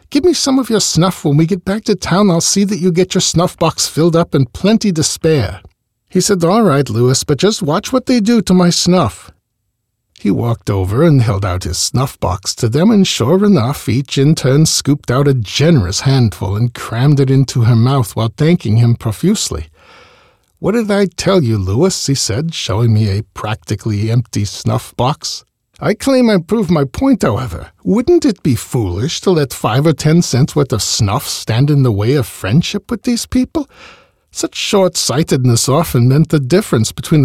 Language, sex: English, male